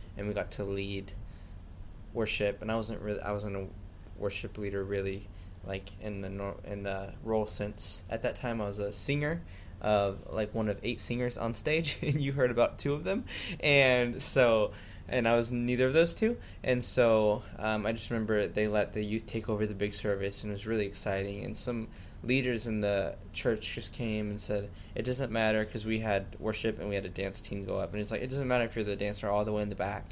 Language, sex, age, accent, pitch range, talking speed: English, male, 20-39, American, 100-120 Hz, 230 wpm